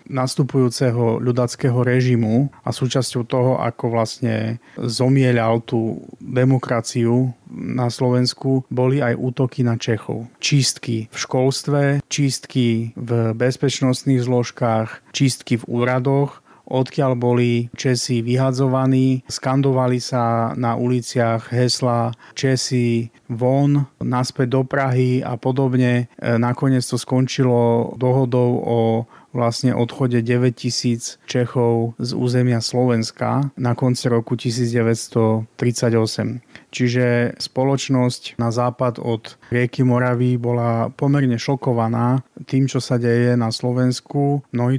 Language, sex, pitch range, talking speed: Slovak, male, 120-130 Hz, 105 wpm